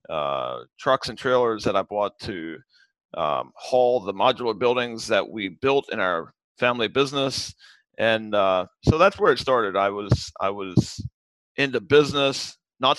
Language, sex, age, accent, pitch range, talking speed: English, male, 40-59, American, 105-140 Hz, 155 wpm